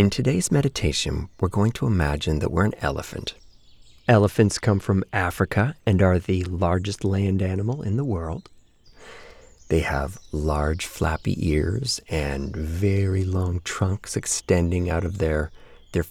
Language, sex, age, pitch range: English, male, 30-49, 80-105 Hz